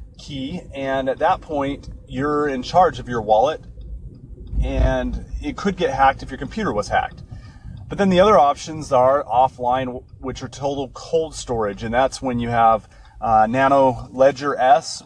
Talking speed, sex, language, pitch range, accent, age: 170 wpm, male, English, 110-135 Hz, American, 30-49